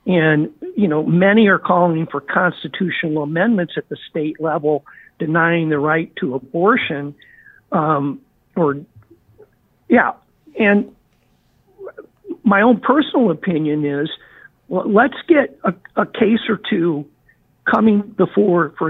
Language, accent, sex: English, American, male